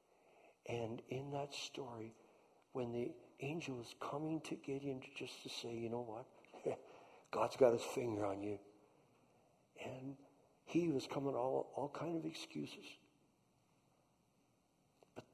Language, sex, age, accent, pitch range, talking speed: English, male, 60-79, American, 115-160 Hz, 130 wpm